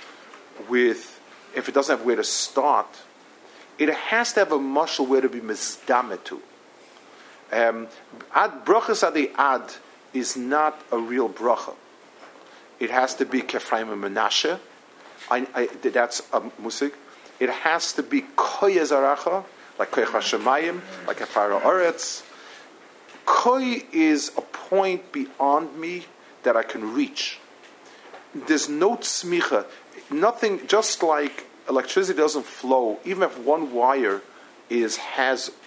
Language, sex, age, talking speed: English, male, 50-69, 125 wpm